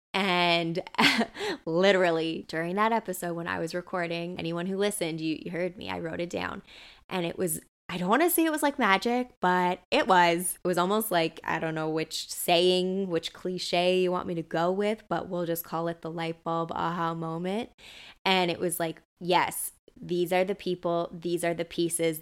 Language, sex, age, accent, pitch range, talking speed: English, female, 20-39, American, 170-195 Hz, 205 wpm